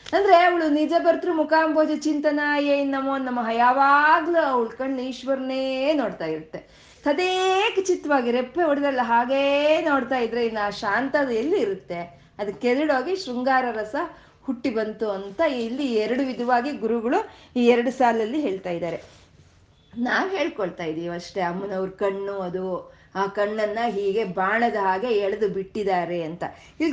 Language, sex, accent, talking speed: Kannada, female, native, 120 wpm